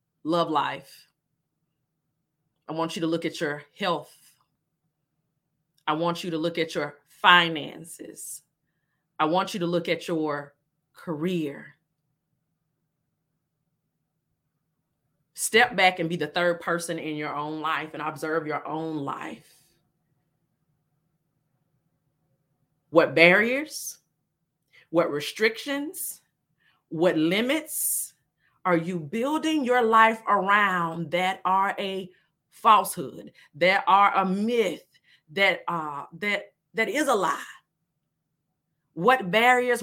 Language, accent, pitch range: English, American, 155-200 Hz